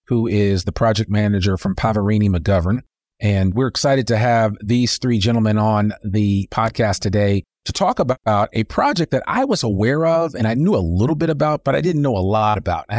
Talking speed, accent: 210 wpm, American